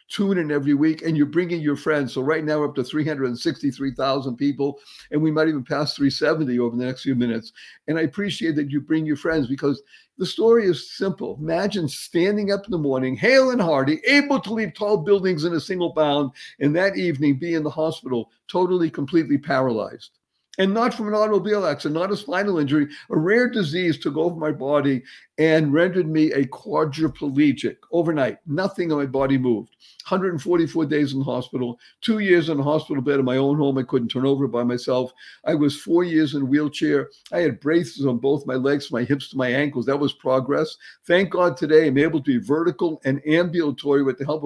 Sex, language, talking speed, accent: male, English, 210 wpm, American